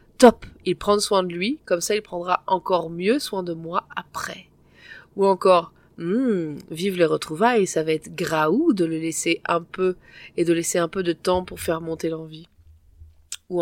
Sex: female